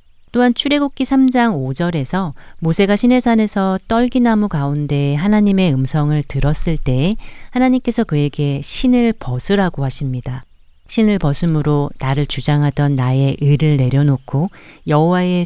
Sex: female